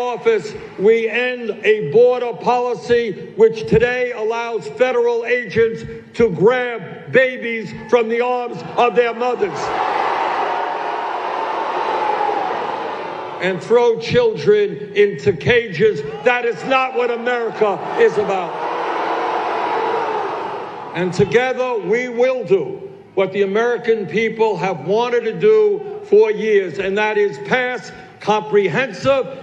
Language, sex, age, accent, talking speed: English, male, 60-79, American, 105 wpm